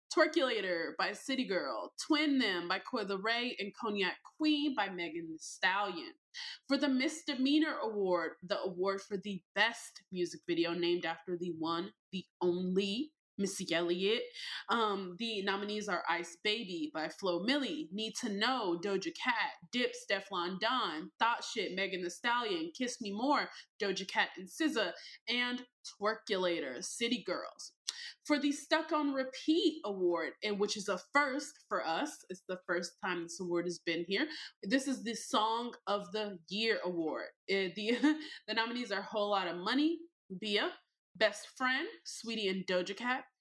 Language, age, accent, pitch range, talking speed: English, 20-39, American, 185-285 Hz, 160 wpm